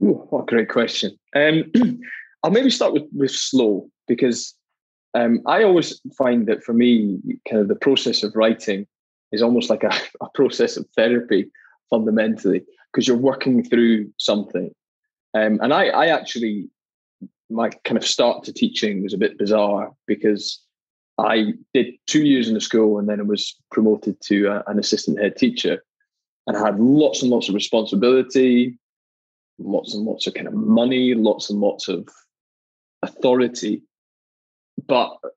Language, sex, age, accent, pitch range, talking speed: English, male, 20-39, British, 105-125 Hz, 160 wpm